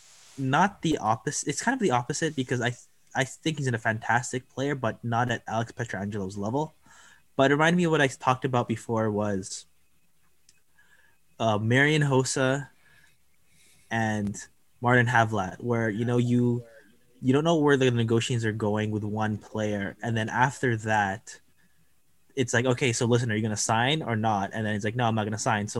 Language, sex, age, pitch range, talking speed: English, male, 20-39, 110-130 Hz, 190 wpm